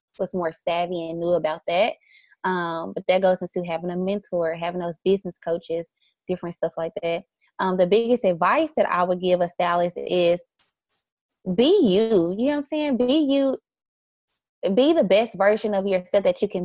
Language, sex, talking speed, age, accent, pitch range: English, female, 185 wpm, 20-39, American, 180-210 Hz